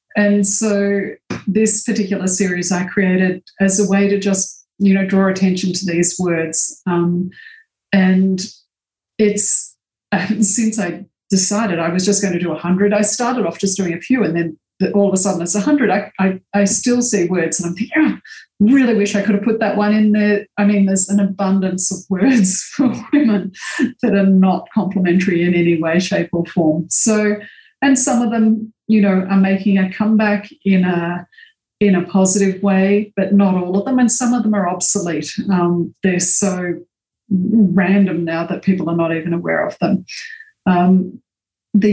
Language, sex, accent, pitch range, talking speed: English, female, Australian, 180-210 Hz, 185 wpm